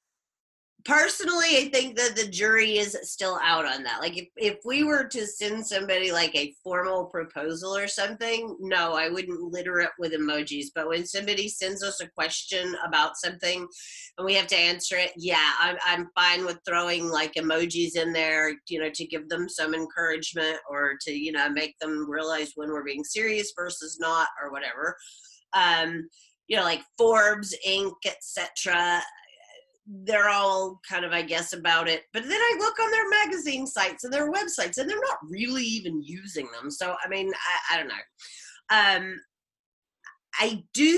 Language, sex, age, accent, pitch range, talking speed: English, female, 30-49, American, 170-225 Hz, 180 wpm